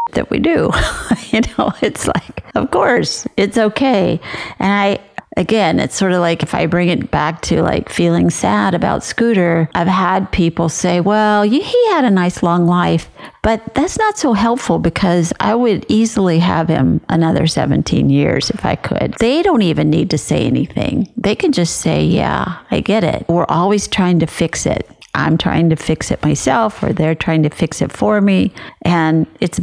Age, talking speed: 50-69, 190 wpm